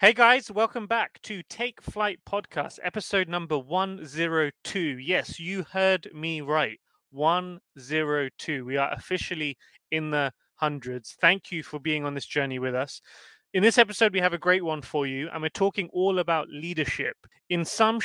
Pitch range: 140-180 Hz